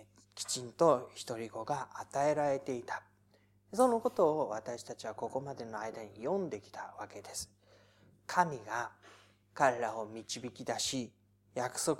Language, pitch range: Japanese, 105-165 Hz